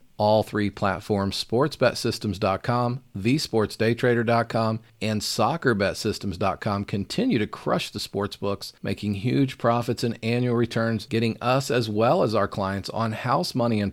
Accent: American